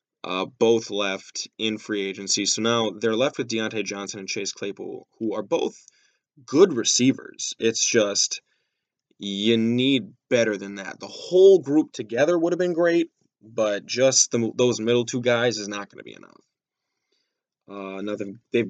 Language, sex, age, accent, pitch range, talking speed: English, male, 20-39, American, 110-135 Hz, 175 wpm